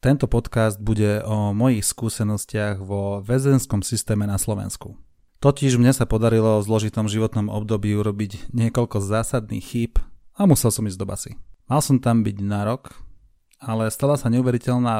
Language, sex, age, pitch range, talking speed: Slovak, male, 30-49, 105-120 Hz, 155 wpm